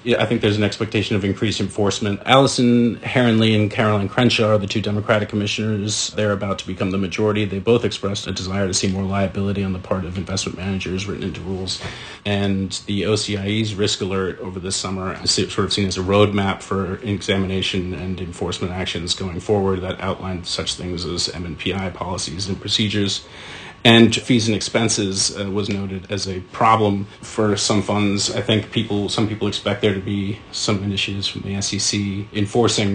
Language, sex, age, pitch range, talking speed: English, male, 40-59, 95-105 Hz, 190 wpm